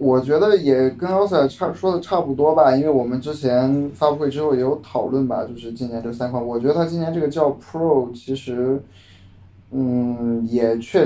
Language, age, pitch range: Chinese, 20-39, 120-145 Hz